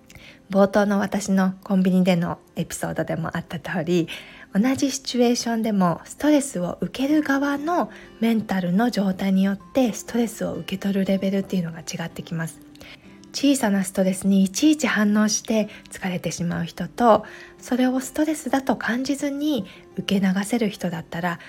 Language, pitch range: Japanese, 175-240 Hz